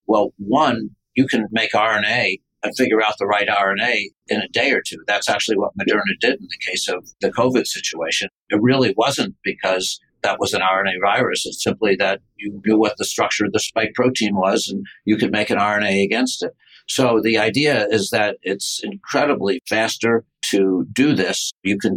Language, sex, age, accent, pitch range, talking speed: English, male, 60-79, American, 100-115 Hz, 195 wpm